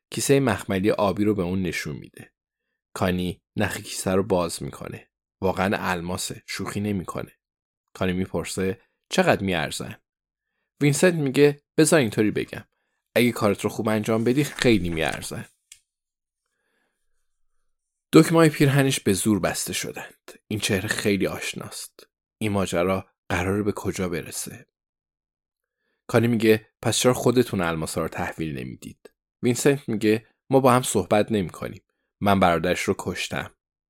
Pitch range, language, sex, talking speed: 90-120 Hz, Persian, male, 125 wpm